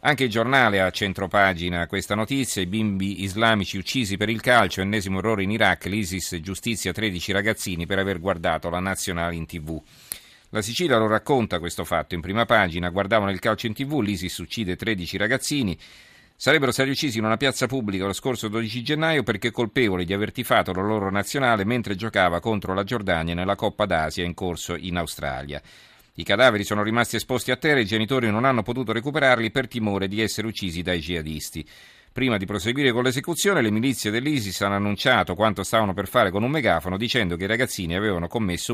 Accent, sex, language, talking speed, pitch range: native, male, Italian, 190 wpm, 95-120 Hz